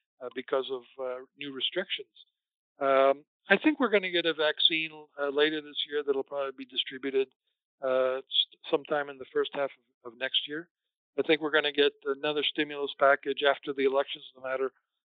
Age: 60-79